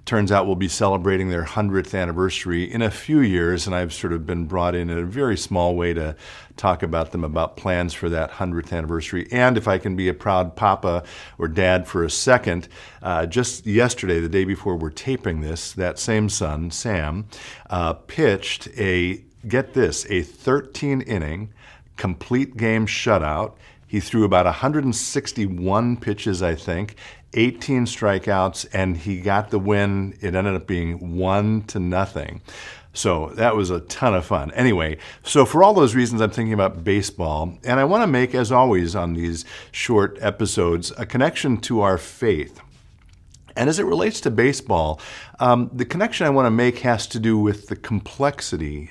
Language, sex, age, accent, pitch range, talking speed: English, male, 50-69, American, 90-115 Hz, 175 wpm